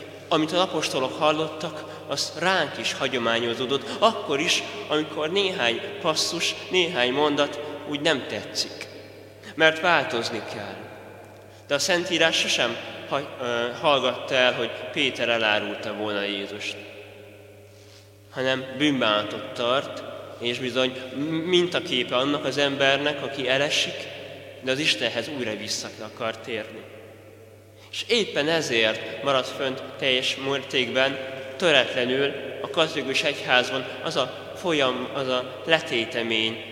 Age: 20-39